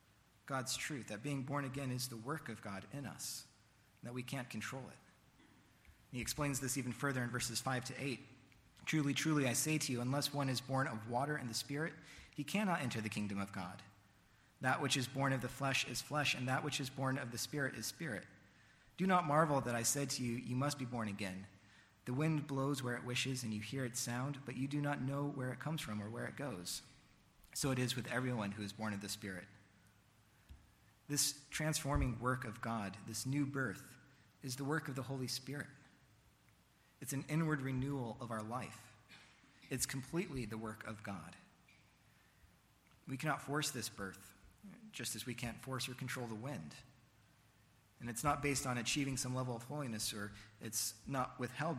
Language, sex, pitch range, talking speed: English, male, 110-140 Hz, 200 wpm